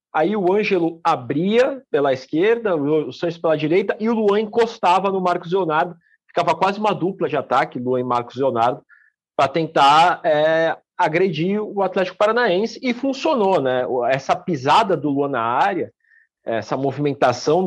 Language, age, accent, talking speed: Portuguese, 40-59, Brazilian, 150 wpm